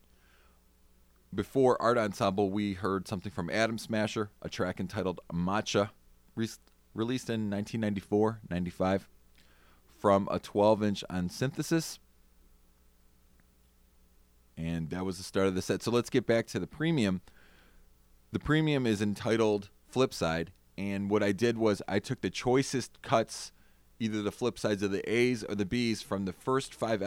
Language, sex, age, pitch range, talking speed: English, male, 30-49, 85-110 Hz, 145 wpm